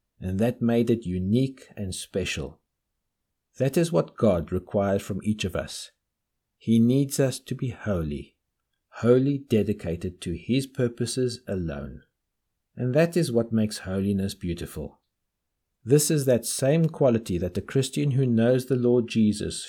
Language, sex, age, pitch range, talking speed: English, male, 50-69, 100-130 Hz, 145 wpm